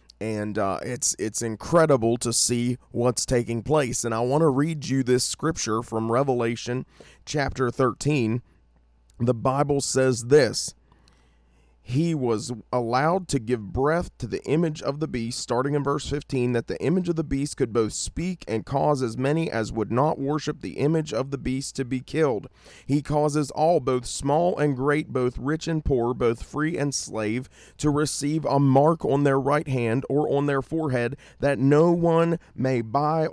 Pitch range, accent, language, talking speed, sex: 120-145 Hz, American, English, 180 wpm, male